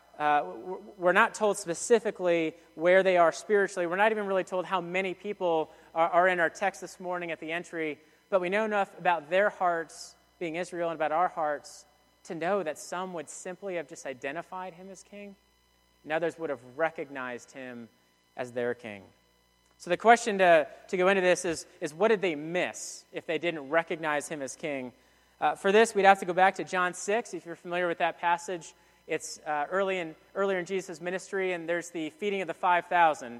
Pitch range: 155-195 Hz